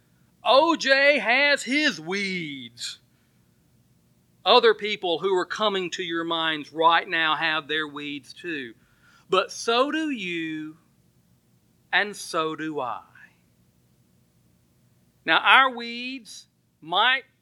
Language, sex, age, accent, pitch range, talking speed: English, male, 40-59, American, 125-205 Hz, 105 wpm